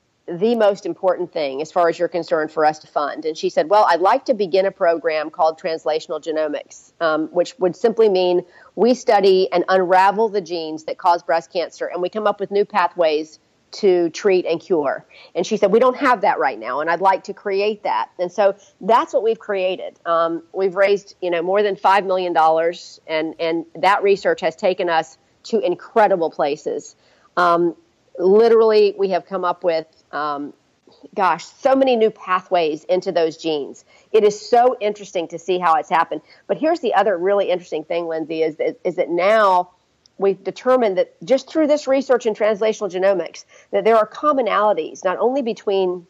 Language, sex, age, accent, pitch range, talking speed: English, female, 40-59, American, 170-215 Hz, 190 wpm